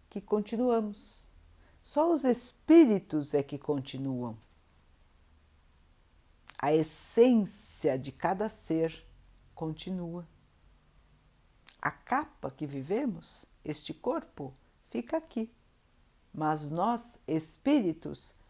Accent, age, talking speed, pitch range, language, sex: Brazilian, 60-79, 80 wpm, 130-215 Hz, Portuguese, female